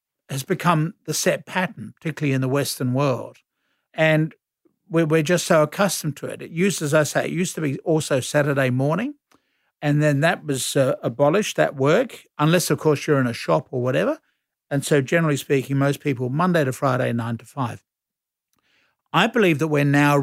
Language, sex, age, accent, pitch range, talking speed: English, male, 60-79, Australian, 135-170 Hz, 185 wpm